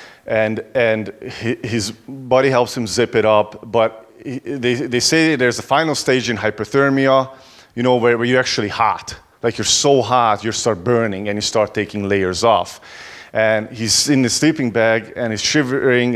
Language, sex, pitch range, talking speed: English, male, 105-125 Hz, 180 wpm